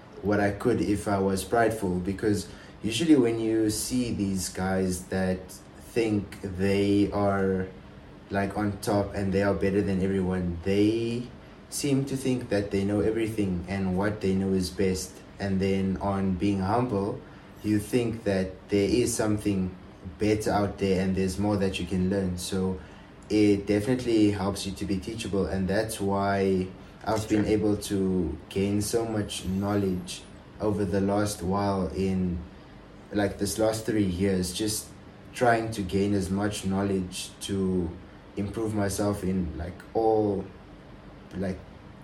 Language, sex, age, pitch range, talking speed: English, male, 20-39, 95-105 Hz, 150 wpm